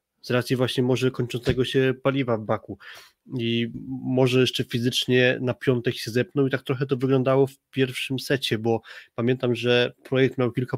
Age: 20-39